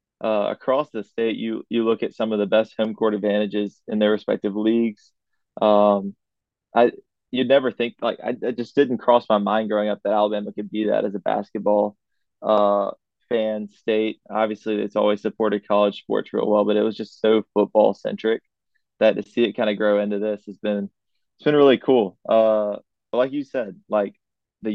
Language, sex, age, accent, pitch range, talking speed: English, male, 20-39, American, 105-115 Hz, 200 wpm